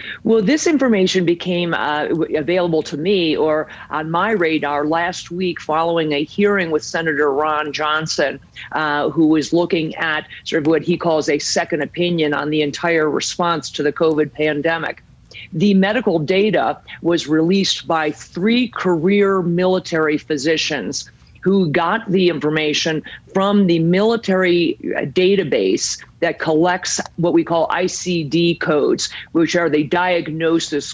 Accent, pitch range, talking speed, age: American, 155-190 Hz, 140 wpm, 50-69